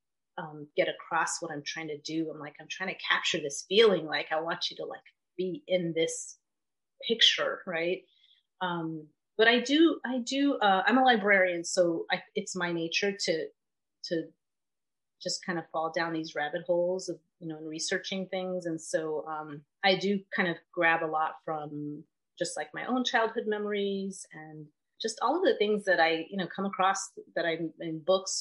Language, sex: English, female